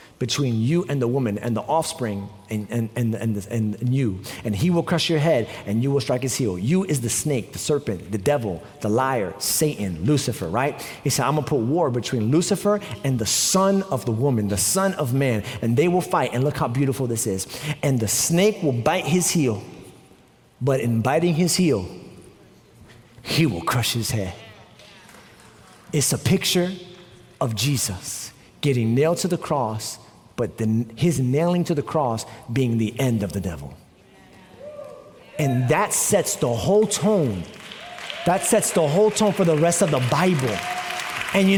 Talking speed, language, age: 185 wpm, English, 40-59